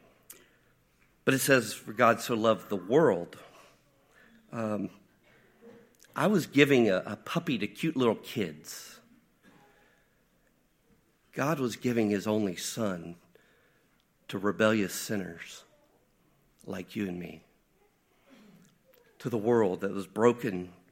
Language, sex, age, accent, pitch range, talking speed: English, male, 50-69, American, 100-120 Hz, 110 wpm